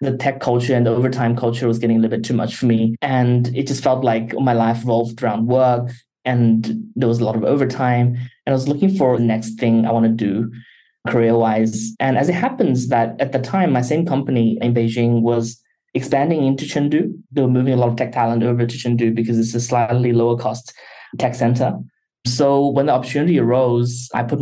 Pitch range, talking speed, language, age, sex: 120-140 Hz, 220 wpm, English, 20-39, male